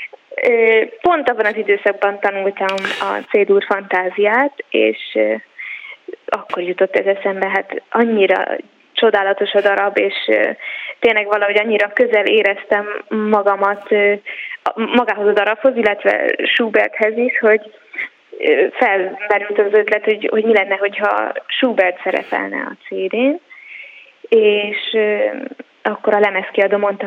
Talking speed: 110 wpm